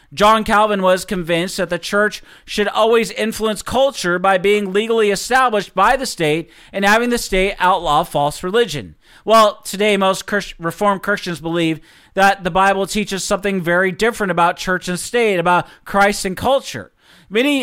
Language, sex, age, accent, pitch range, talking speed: English, male, 40-59, American, 185-230 Hz, 160 wpm